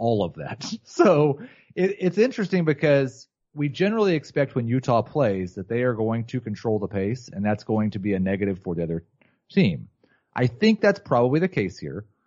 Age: 30-49